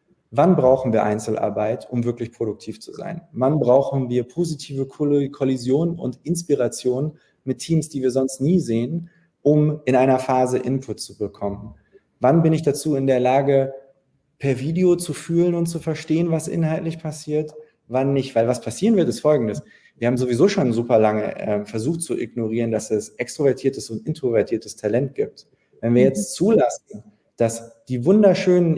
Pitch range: 120-160 Hz